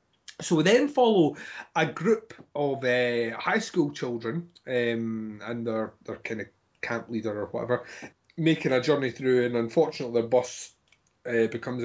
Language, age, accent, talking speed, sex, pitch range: English, 30-49, British, 155 wpm, male, 120-160 Hz